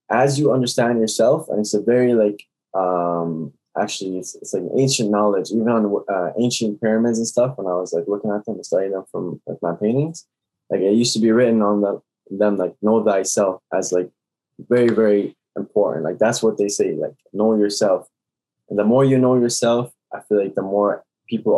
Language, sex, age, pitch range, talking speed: English, male, 20-39, 95-115 Hz, 205 wpm